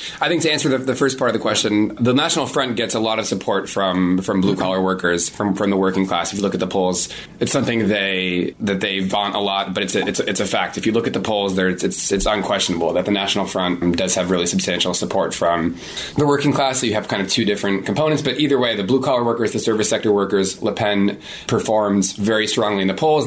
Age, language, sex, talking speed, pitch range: 20-39, English, male, 265 wpm, 95-115 Hz